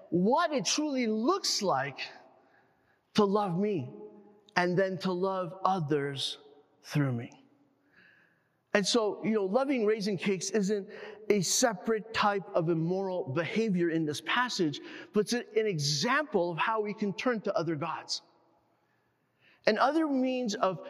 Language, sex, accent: English, male, American